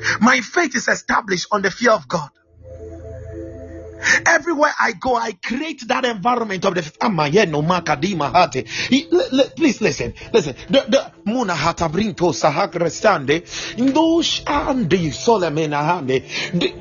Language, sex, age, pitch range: English, male, 30-49, 180-285 Hz